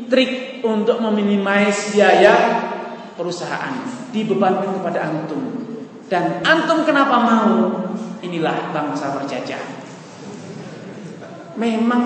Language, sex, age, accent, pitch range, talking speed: English, male, 20-39, Indonesian, 175-215 Hz, 80 wpm